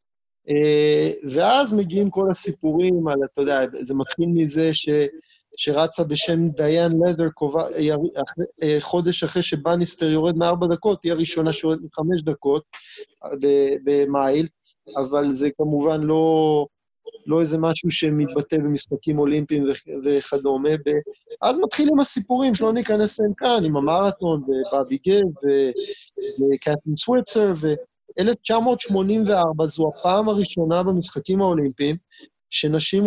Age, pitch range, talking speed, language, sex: 30-49, 150-195 Hz, 120 wpm, Hebrew, male